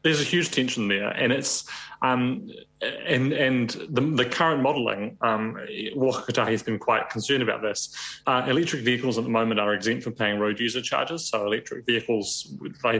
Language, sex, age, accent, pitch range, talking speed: English, male, 30-49, British, 105-120 Hz, 180 wpm